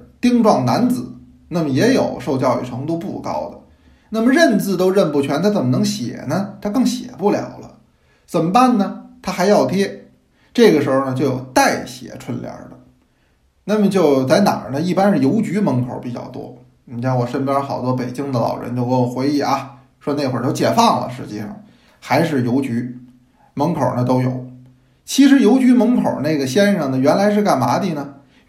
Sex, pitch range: male, 125-205 Hz